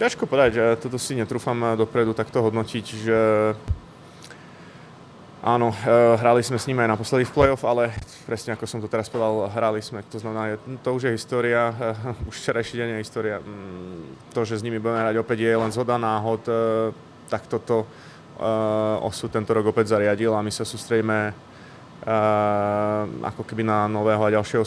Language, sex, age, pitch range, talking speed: Czech, male, 20-39, 100-115 Hz, 165 wpm